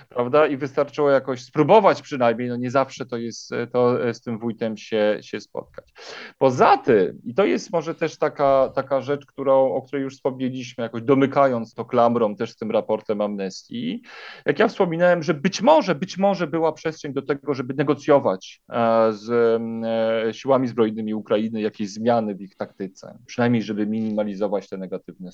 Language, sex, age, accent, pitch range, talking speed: Polish, male, 40-59, native, 115-160 Hz, 165 wpm